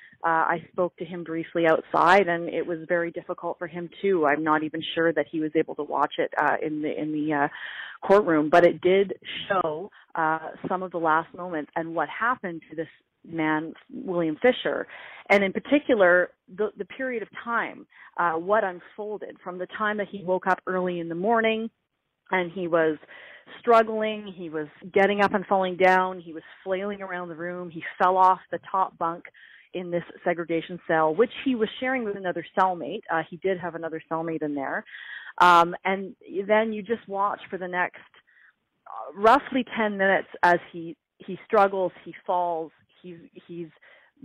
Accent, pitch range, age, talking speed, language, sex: American, 165-200 Hz, 30-49, 180 wpm, English, female